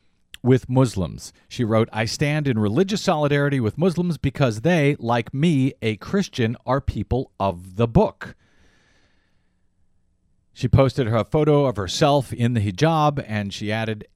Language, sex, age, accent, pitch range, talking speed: English, male, 40-59, American, 105-145 Hz, 145 wpm